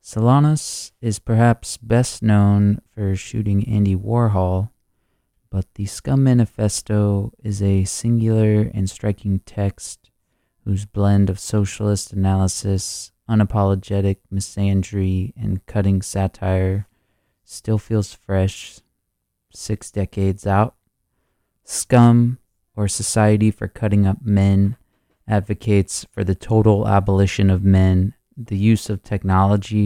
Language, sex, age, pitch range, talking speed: English, male, 20-39, 95-105 Hz, 105 wpm